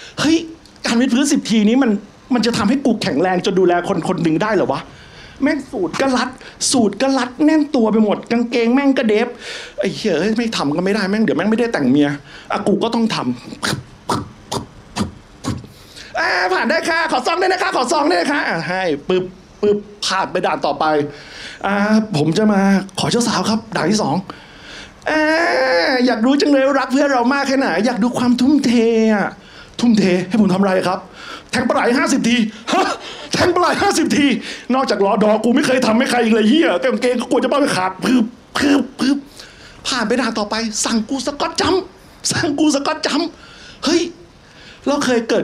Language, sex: Thai, male